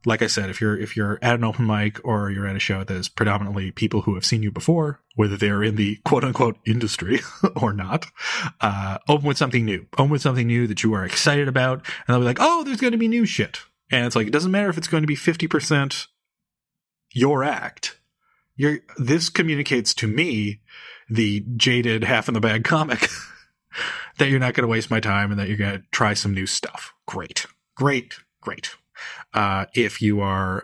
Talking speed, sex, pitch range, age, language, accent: 205 wpm, male, 100-125 Hz, 30-49, English, American